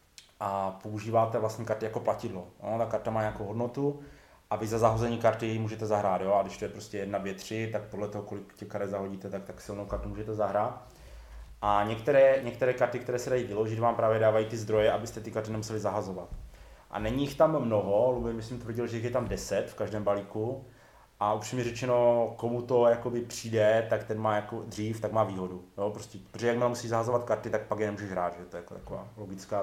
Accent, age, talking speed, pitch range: native, 30-49, 210 wpm, 105-115 Hz